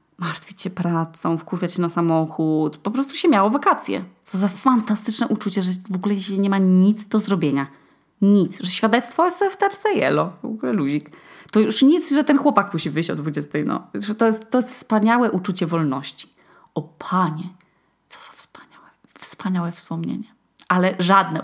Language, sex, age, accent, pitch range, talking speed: Polish, female, 20-39, native, 160-225 Hz, 170 wpm